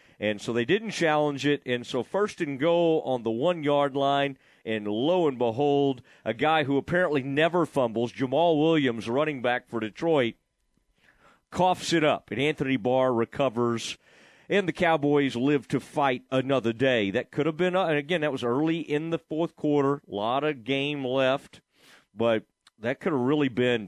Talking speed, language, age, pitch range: 175 wpm, English, 40-59, 125-160 Hz